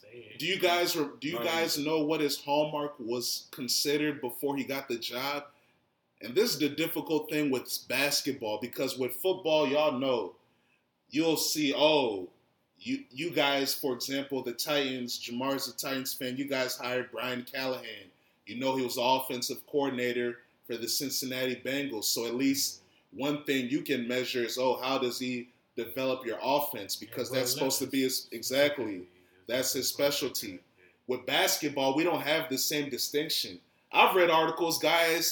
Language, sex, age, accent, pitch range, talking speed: English, male, 30-49, American, 130-175 Hz, 165 wpm